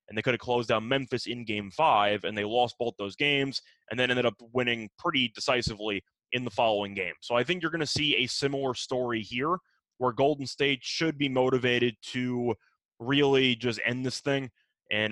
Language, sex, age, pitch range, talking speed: English, male, 20-39, 115-135 Hz, 205 wpm